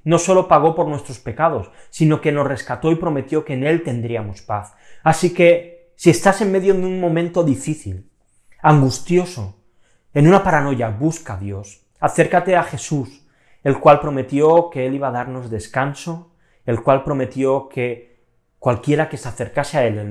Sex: male